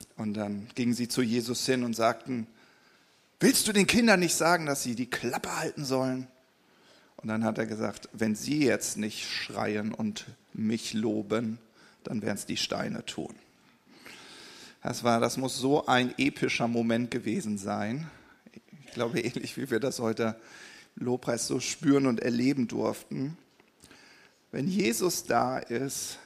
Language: German